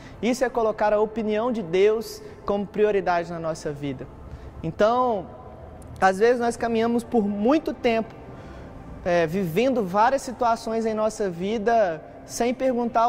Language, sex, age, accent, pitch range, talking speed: Gujarati, male, 20-39, Brazilian, 180-230 Hz, 135 wpm